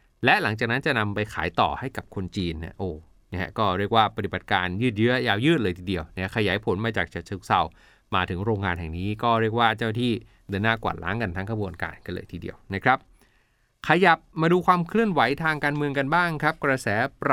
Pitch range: 105-145 Hz